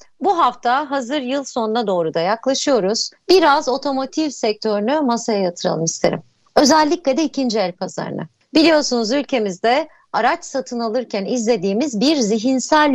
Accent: native